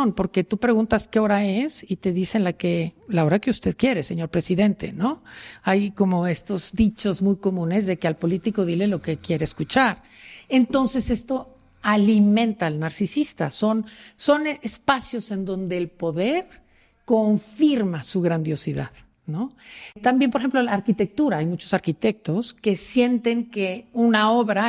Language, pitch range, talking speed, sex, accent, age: Spanish, 180-235 Hz, 145 wpm, female, Mexican, 50-69